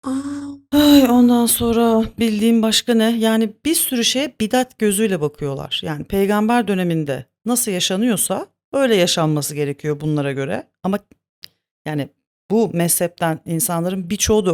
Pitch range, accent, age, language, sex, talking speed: 155-225 Hz, native, 40-59, Turkish, female, 125 wpm